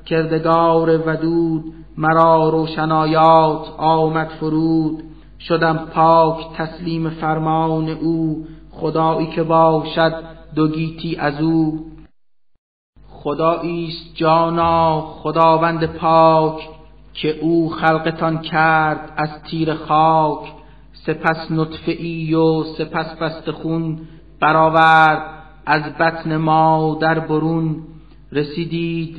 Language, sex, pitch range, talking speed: Persian, male, 155-165 Hz, 85 wpm